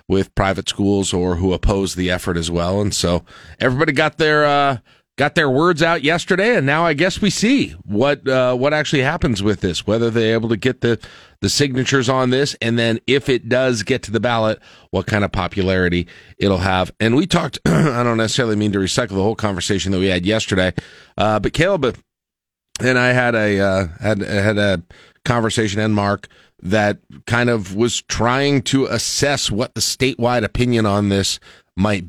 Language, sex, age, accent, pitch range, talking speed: English, male, 40-59, American, 95-120 Hz, 195 wpm